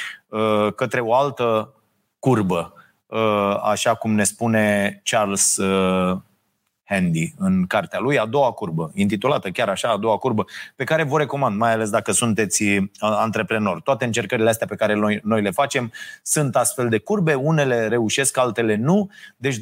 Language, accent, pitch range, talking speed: Romanian, native, 110-140 Hz, 150 wpm